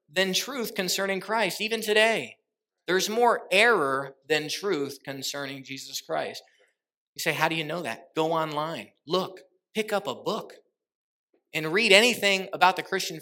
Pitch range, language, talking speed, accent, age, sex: 160-210 Hz, English, 155 wpm, American, 30-49, male